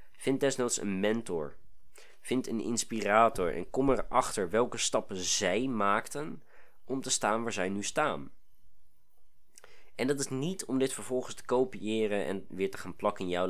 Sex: male